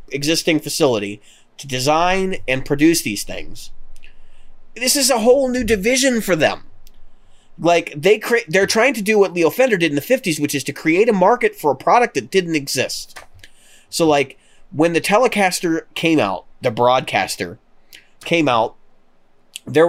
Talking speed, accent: 165 wpm, American